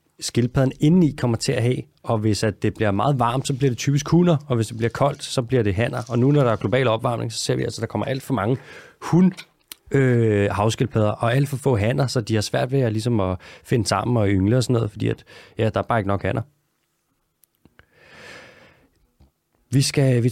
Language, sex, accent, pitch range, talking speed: Danish, male, native, 105-135 Hz, 225 wpm